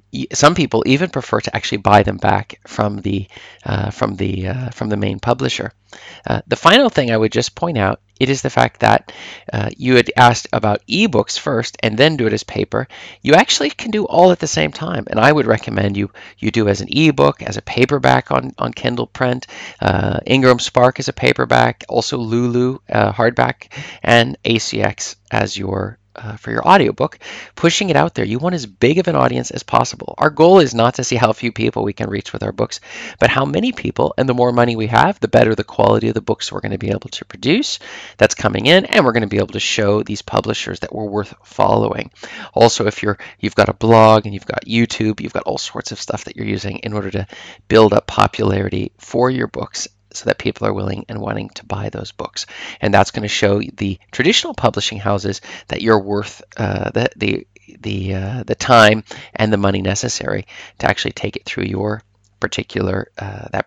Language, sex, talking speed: English, male, 220 wpm